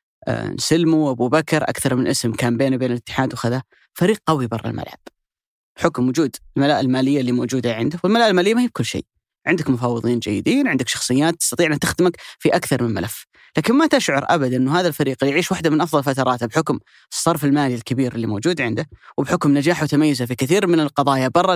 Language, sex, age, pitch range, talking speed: Arabic, female, 30-49, 125-160 Hz, 190 wpm